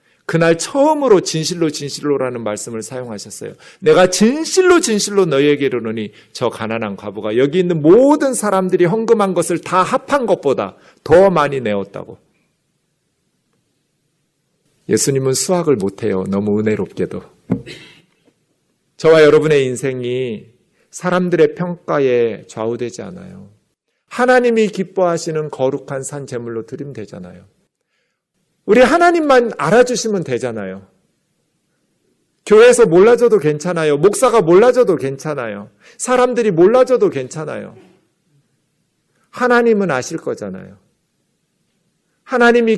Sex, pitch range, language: male, 135-210 Hz, Korean